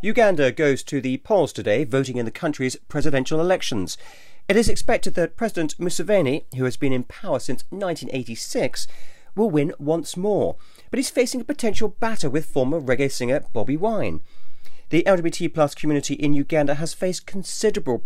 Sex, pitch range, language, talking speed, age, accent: male, 125-175 Hz, English, 165 wpm, 40-59, British